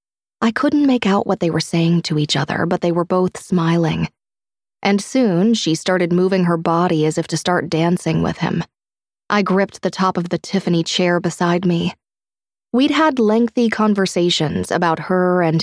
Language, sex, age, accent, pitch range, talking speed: English, female, 20-39, American, 165-200 Hz, 180 wpm